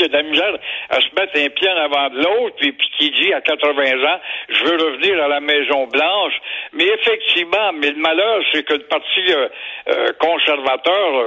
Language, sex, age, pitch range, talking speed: French, male, 60-79, 150-240 Hz, 190 wpm